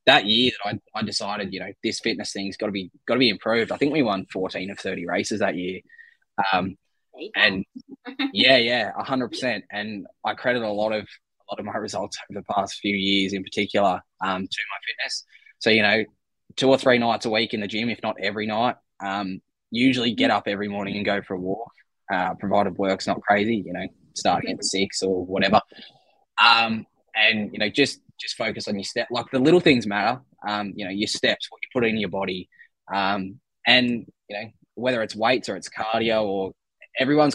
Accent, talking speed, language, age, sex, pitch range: Australian, 215 wpm, English, 10-29, male, 100-115 Hz